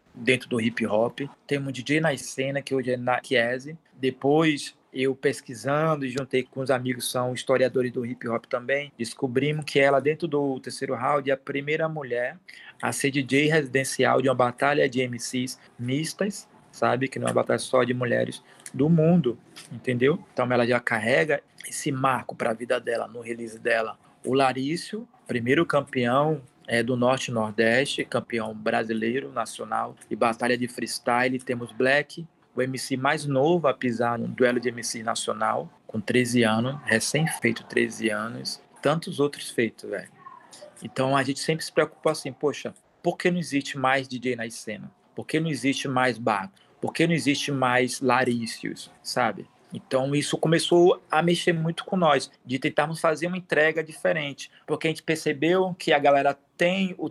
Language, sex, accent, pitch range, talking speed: Portuguese, male, Brazilian, 125-155 Hz, 170 wpm